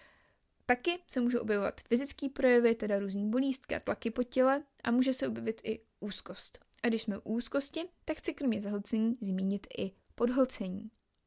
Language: Czech